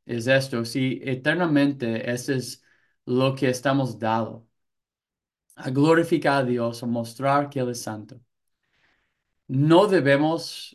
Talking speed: 130 wpm